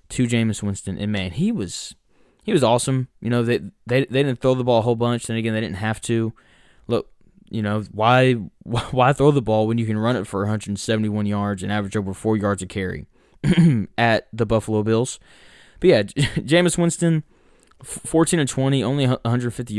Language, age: English, 20-39